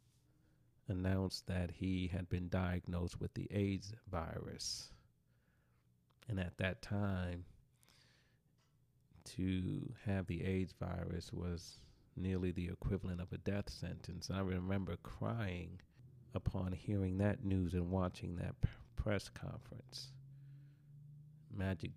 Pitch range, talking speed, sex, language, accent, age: 90-120 Hz, 110 wpm, male, English, American, 40-59